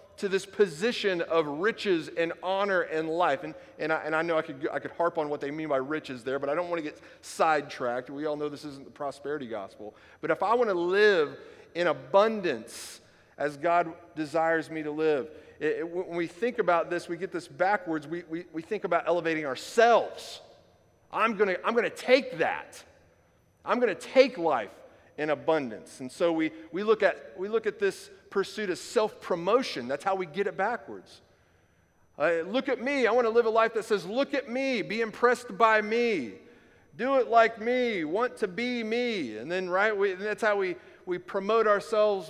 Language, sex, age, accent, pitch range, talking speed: English, male, 40-59, American, 140-215 Hz, 205 wpm